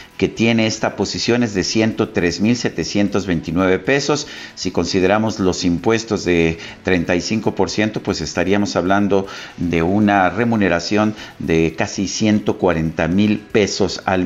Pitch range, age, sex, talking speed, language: 90-110 Hz, 50-69, male, 105 wpm, Spanish